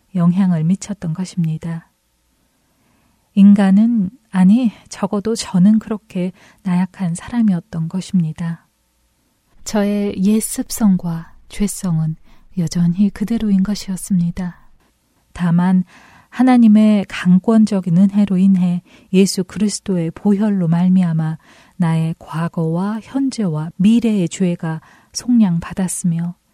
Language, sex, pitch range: Korean, female, 175-210 Hz